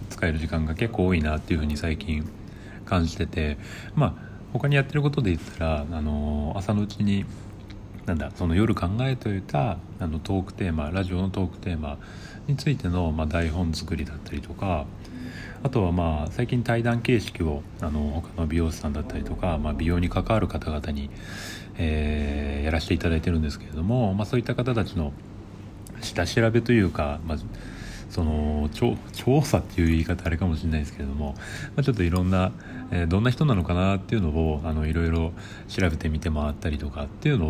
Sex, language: male, Japanese